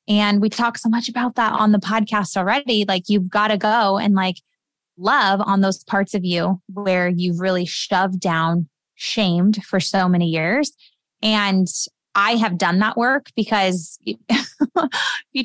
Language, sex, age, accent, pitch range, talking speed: English, female, 20-39, American, 185-220 Hz, 165 wpm